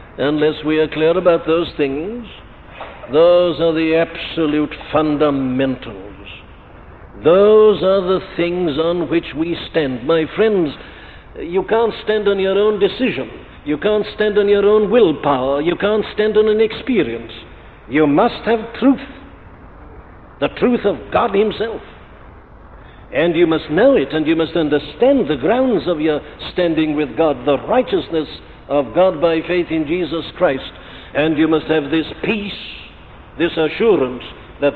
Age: 60-79